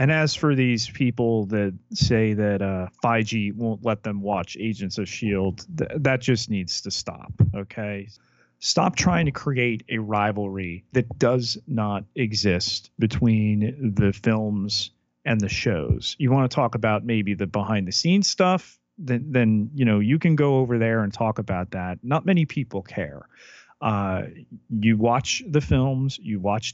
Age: 30-49